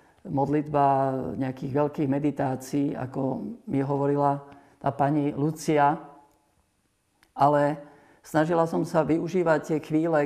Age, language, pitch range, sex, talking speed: 50-69, Slovak, 135-150 Hz, male, 100 wpm